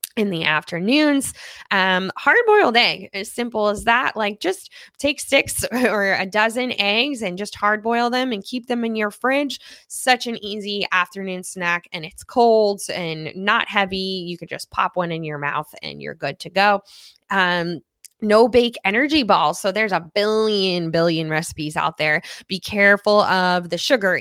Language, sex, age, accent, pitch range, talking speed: English, female, 20-39, American, 170-230 Hz, 180 wpm